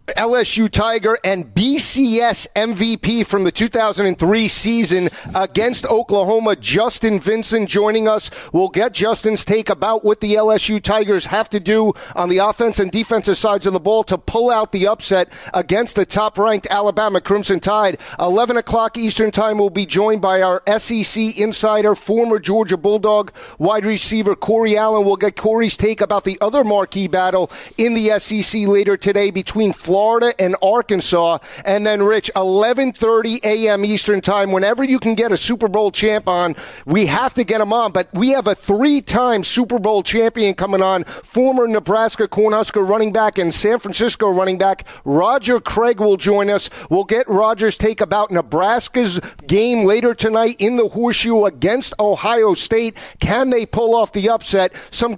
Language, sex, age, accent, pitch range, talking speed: English, male, 40-59, American, 200-225 Hz, 165 wpm